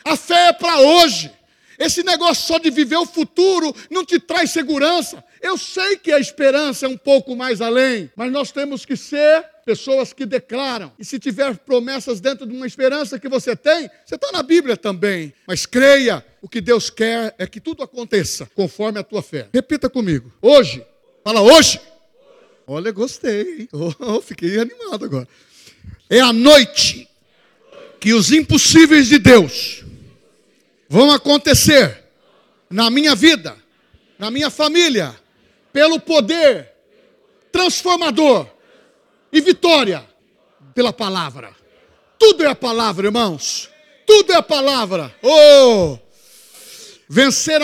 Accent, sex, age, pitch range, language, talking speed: Brazilian, male, 60-79, 240-315 Hz, Portuguese, 135 wpm